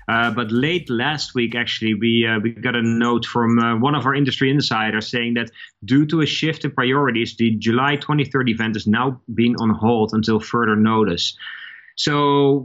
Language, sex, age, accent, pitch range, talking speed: English, male, 30-49, Dutch, 120-150 Hz, 190 wpm